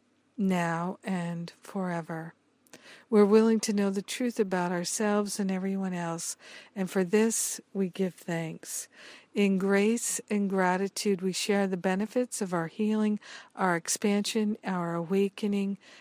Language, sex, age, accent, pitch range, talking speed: English, female, 50-69, American, 180-220 Hz, 130 wpm